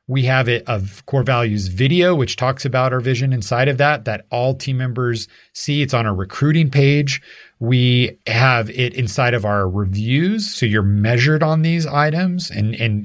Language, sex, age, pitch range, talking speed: English, male, 40-59, 110-145 Hz, 180 wpm